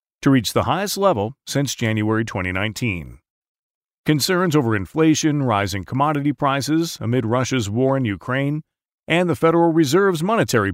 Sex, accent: male, American